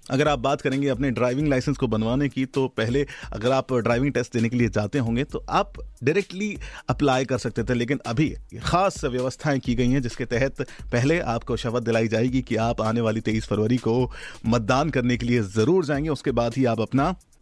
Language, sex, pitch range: Hindi, male, 120-150 Hz